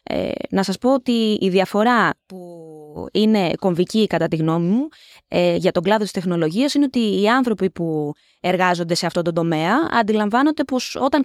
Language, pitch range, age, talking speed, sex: Greek, 185-275 Hz, 20-39, 175 wpm, female